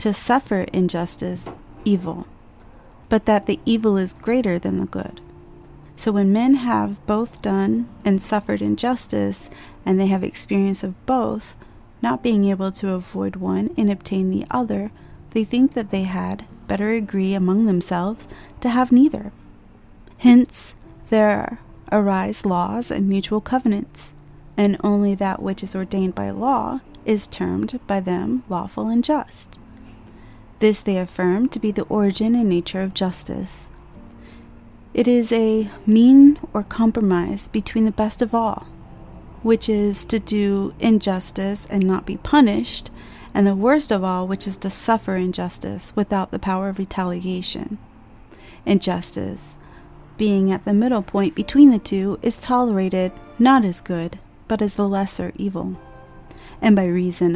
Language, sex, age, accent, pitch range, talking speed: English, female, 30-49, American, 180-220 Hz, 145 wpm